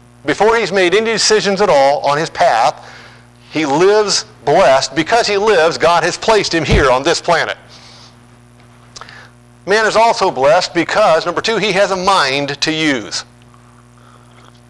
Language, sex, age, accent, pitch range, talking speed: English, male, 50-69, American, 120-175 Hz, 150 wpm